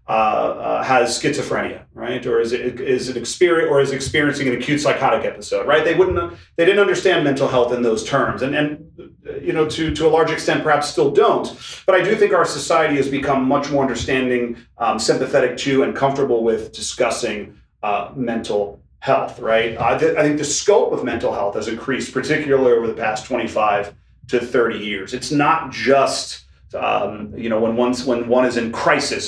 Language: English